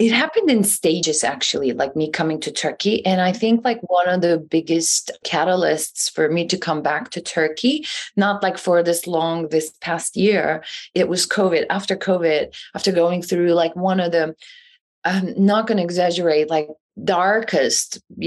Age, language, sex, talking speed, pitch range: 30-49, English, female, 175 wpm, 160-205 Hz